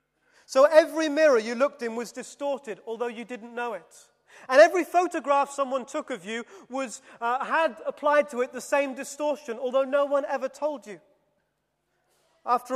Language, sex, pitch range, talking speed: English, male, 235-290 Hz, 170 wpm